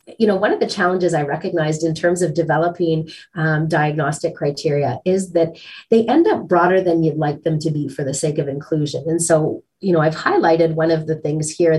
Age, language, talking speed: 30-49, English, 220 wpm